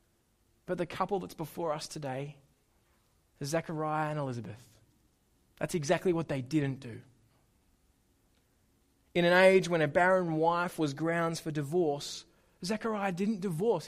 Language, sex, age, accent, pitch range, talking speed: English, male, 20-39, Australian, 150-220 Hz, 130 wpm